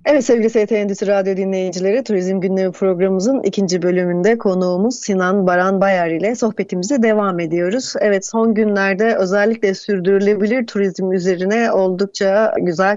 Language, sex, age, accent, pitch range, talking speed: Turkish, female, 30-49, native, 185-225 Hz, 125 wpm